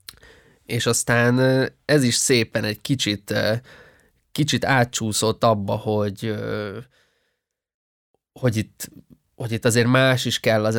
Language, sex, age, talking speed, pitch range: Hungarian, male, 20-39, 110 wpm, 110-130 Hz